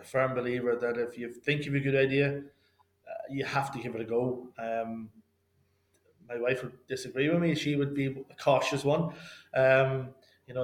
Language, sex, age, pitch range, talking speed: English, male, 20-39, 120-140 Hz, 190 wpm